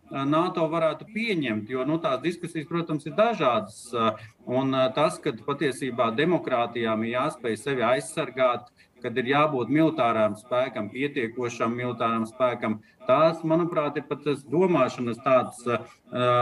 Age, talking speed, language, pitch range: 40-59, 125 wpm, English, 115-155 Hz